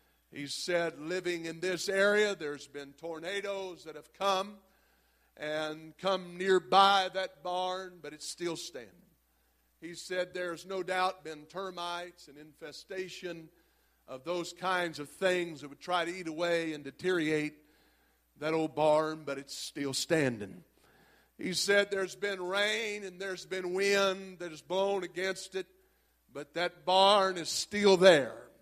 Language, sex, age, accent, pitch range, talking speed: English, male, 50-69, American, 155-195 Hz, 145 wpm